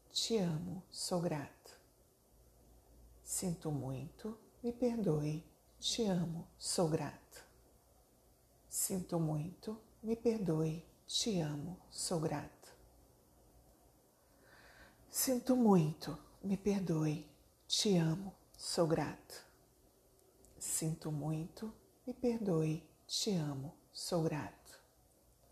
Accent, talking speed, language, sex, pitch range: Brazilian, 85 wpm, Portuguese, female, 155-205 Hz